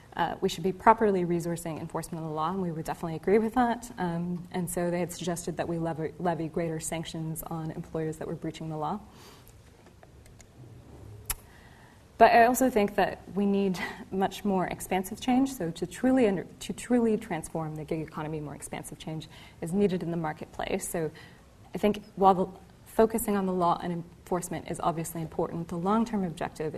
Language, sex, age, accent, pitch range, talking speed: English, female, 20-39, American, 160-200 Hz, 175 wpm